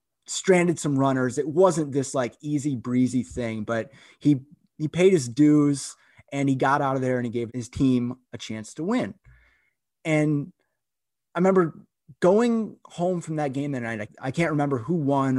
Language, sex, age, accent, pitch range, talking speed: English, male, 30-49, American, 120-150 Hz, 180 wpm